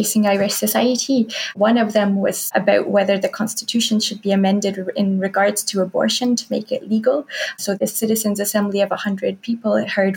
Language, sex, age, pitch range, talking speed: English, female, 20-39, 195-220 Hz, 170 wpm